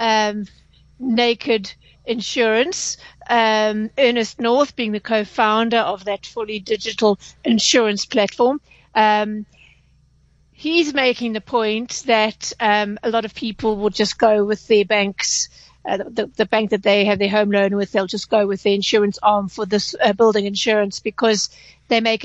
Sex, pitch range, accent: female, 210-240 Hz, British